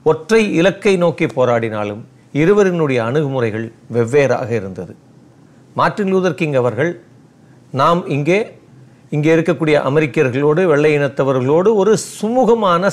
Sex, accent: male, native